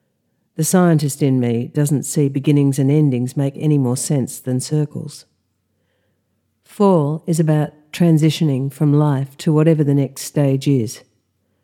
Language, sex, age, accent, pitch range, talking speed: English, female, 50-69, Australian, 135-160 Hz, 140 wpm